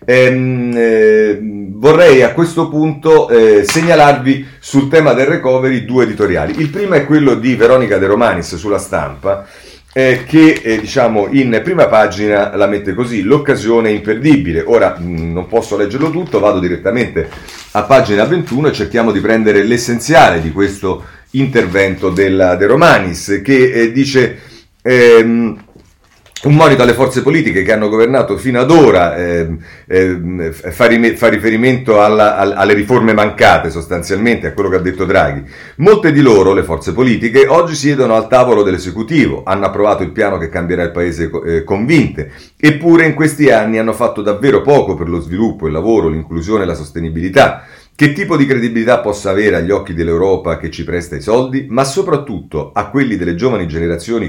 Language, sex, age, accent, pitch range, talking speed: Italian, male, 40-59, native, 90-130 Hz, 160 wpm